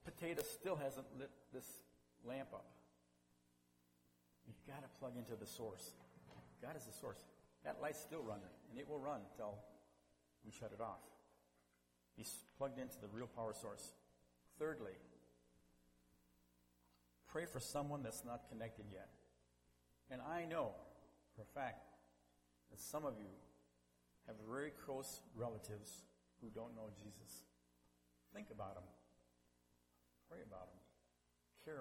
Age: 50-69